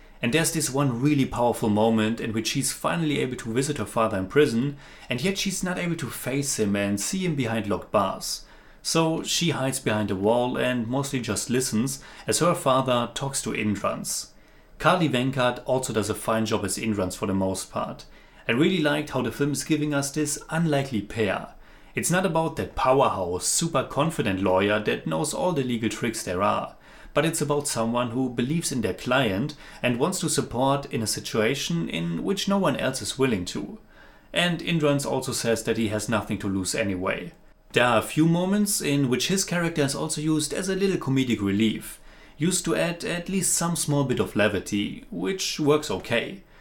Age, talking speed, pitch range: 30-49, 200 wpm, 110-155 Hz